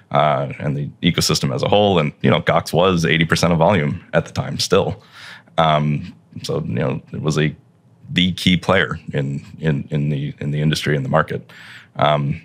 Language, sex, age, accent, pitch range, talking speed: English, male, 30-49, American, 75-90 Hz, 200 wpm